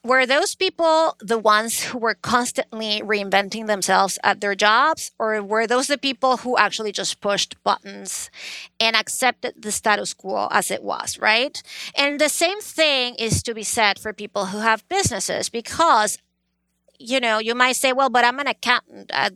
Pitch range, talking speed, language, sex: 215-290 Hz, 175 wpm, English, female